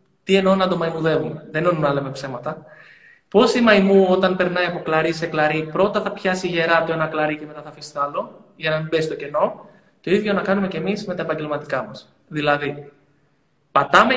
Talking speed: 210 wpm